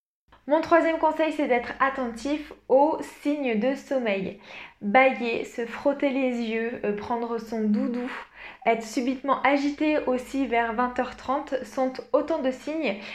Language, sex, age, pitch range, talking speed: French, female, 20-39, 230-280 Hz, 130 wpm